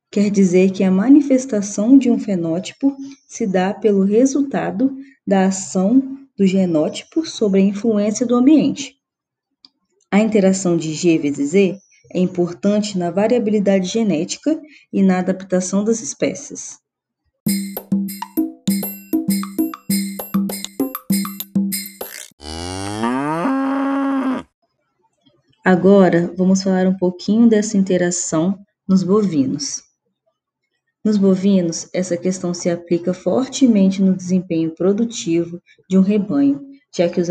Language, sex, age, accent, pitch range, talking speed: Portuguese, female, 20-39, Brazilian, 180-225 Hz, 100 wpm